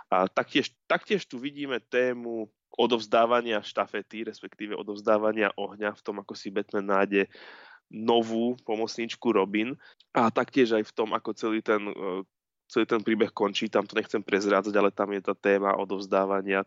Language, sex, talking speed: Slovak, male, 150 wpm